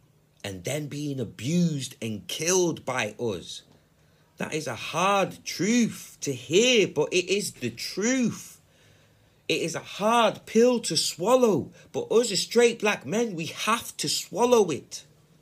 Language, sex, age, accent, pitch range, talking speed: English, male, 30-49, British, 150-240 Hz, 150 wpm